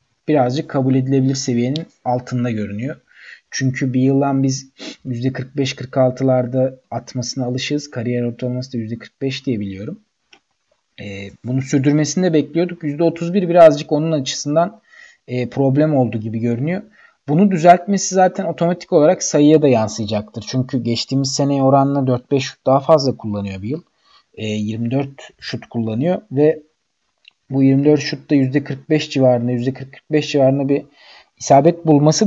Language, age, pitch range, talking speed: Turkish, 40-59, 125-165 Hz, 125 wpm